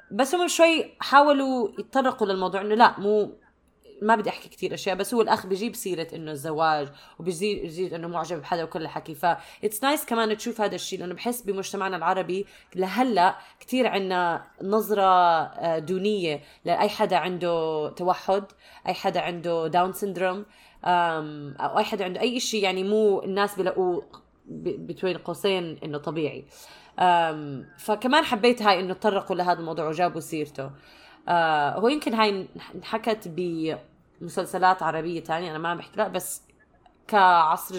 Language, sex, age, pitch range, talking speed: Arabic, female, 20-39, 165-210 Hz, 145 wpm